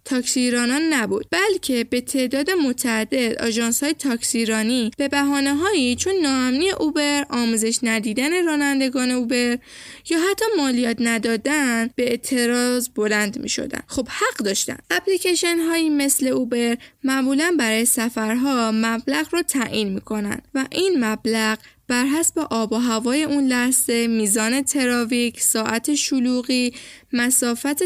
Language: Persian